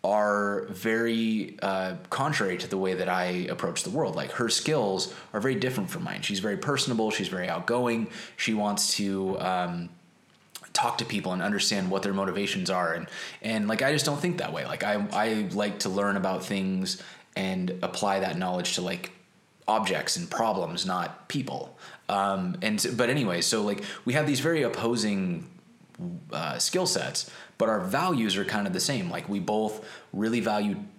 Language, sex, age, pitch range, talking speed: English, male, 20-39, 95-145 Hz, 180 wpm